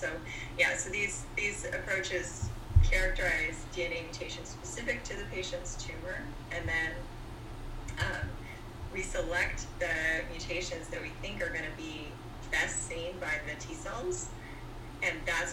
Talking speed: 135 wpm